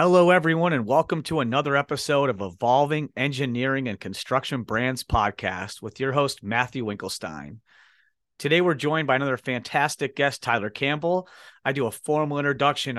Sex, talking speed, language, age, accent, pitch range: male, 155 wpm, English, 40-59, American, 120-145 Hz